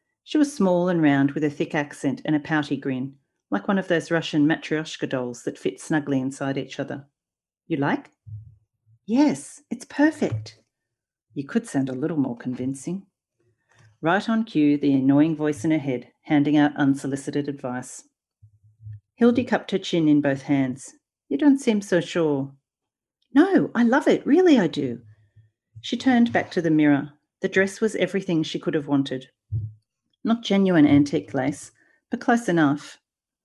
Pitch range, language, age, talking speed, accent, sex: 140-195 Hz, English, 40-59, 165 wpm, Australian, female